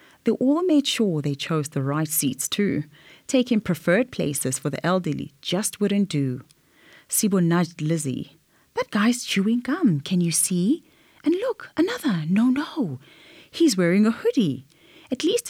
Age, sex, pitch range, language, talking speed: 30-49, female, 150-230 Hz, English, 155 wpm